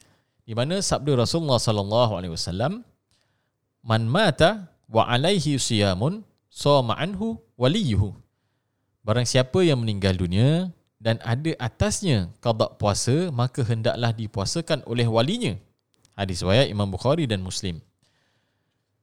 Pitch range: 105-145 Hz